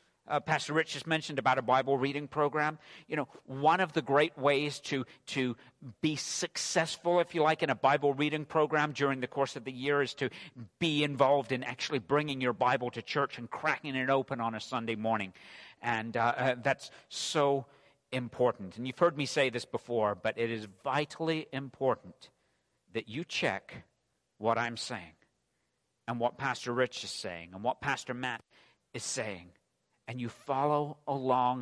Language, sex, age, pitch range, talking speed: English, male, 50-69, 125-155 Hz, 180 wpm